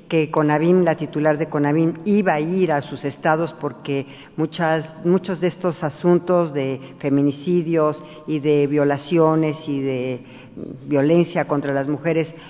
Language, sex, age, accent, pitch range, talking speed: Spanish, female, 50-69, Mexican, 145-165 Hz, 135 wpm